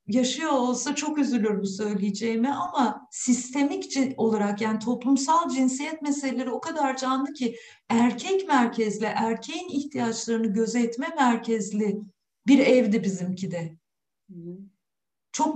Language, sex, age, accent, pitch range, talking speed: Turkish, female, 60-79, native, 210-280 Hz, 110 wpm